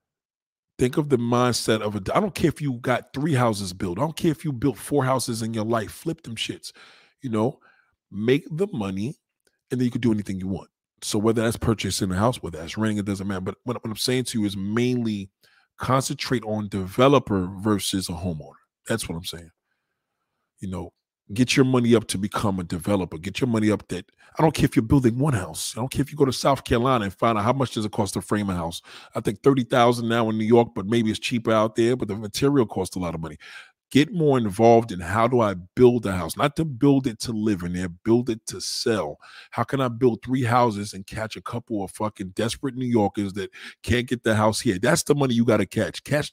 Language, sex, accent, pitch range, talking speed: English, male, American, 100-130 Hz, 245 wpm